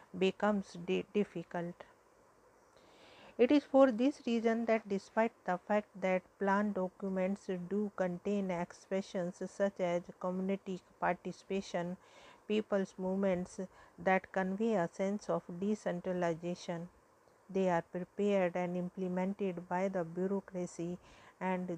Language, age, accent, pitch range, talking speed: English, 50-69, Indian, 180-210 Hz, 105 wpm